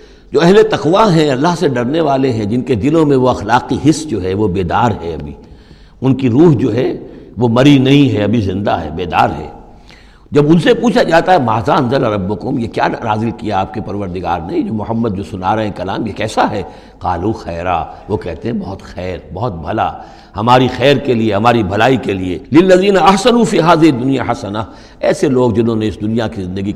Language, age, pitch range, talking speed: Urdu, 60-79, 105-150 Hz, 210 wpm